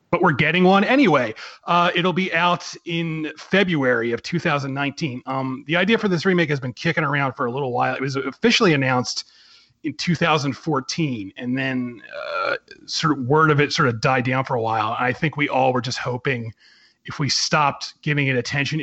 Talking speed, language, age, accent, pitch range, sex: 195 wpm, English, 30-49, American, 130-170 Hz, male